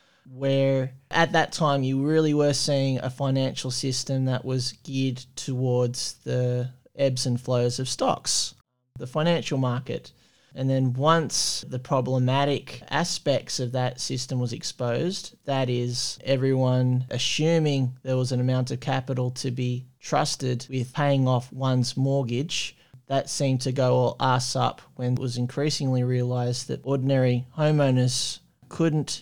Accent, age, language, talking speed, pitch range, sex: Australian, 20-39, English, 140 wpm, 125-140 Hz, male